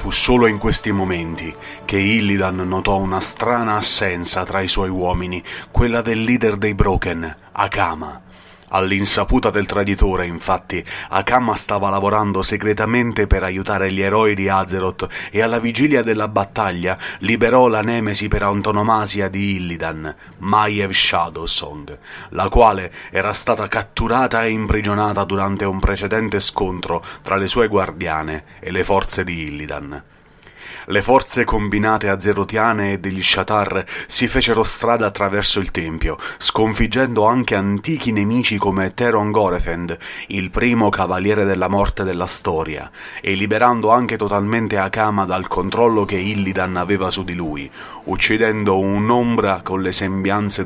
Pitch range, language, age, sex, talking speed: 95-110 Hz, Italian, 30-49, male, 135 wpm